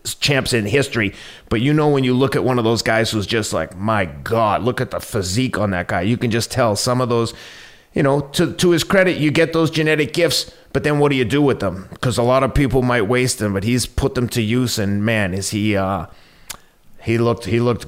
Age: 30-49